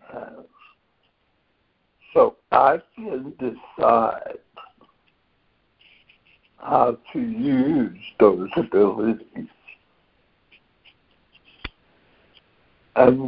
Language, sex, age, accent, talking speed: English, male, 60-79, American, 50 wpm